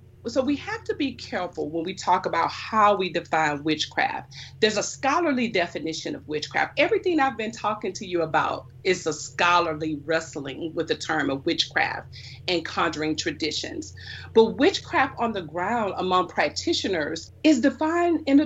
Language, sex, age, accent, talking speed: English, female, 40-59, American, 165 wpm